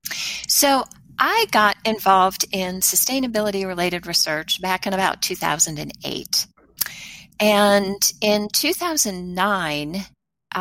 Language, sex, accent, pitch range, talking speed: English, female, American, 165-210 Hz, 80 wpm